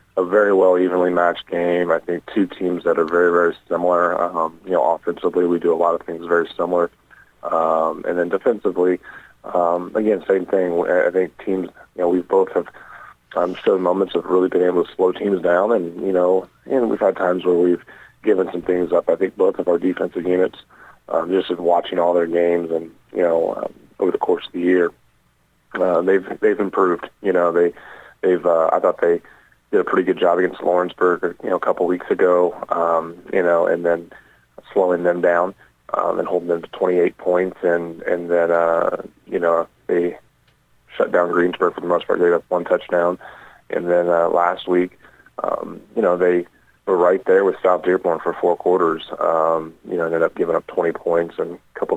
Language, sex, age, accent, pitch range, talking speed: English, male, 30-49, American, 85-90 Hz, 210 wpm